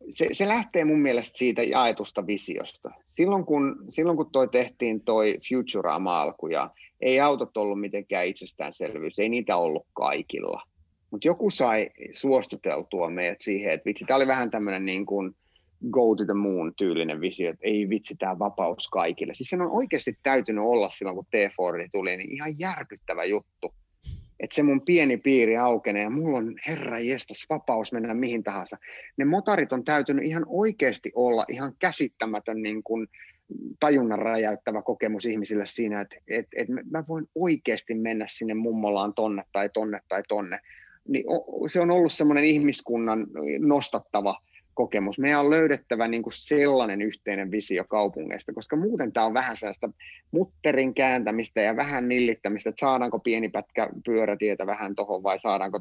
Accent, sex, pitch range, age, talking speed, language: native, male, 105-140 Hz, 30-49, 155 wpm, Finnish